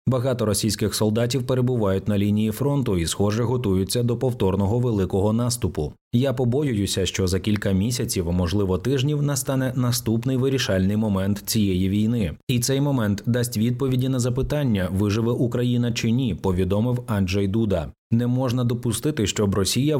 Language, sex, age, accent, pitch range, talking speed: Ukrainian, male, 30-49, native, 100-125 Hz, 140 wpm